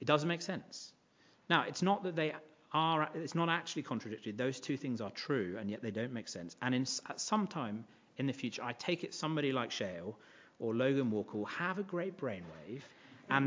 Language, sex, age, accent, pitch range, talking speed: English, male, 40-59, British, 120-160 Hz, 210 wpm